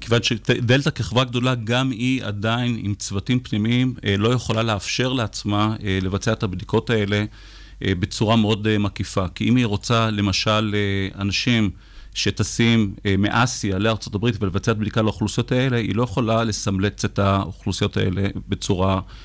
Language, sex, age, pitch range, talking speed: Hebrew, male, 40-59, 100-120 Hz, 130 wpm